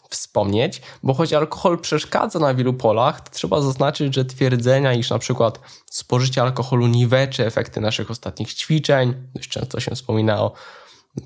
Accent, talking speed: native, 150 wpm